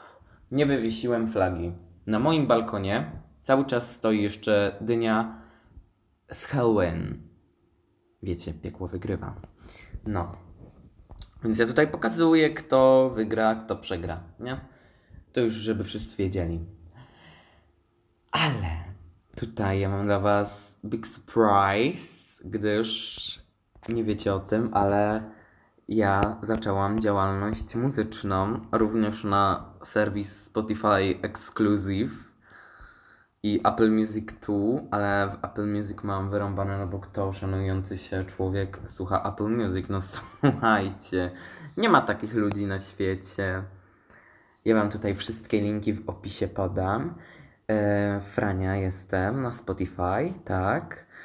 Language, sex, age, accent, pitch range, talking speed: Polish, male, 20-39, native, 95-110 Hz, 110 wpm